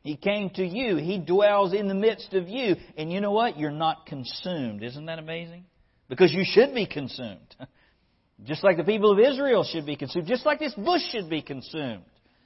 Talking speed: 200 wpm